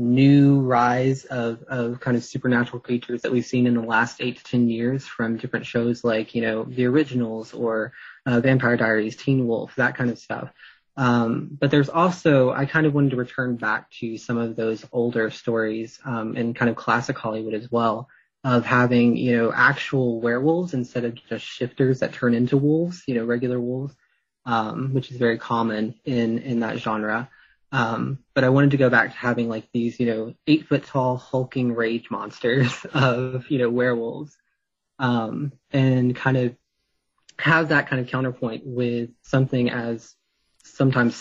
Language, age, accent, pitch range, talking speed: English, 20-39, American, 115-130 Hz, 180 wpm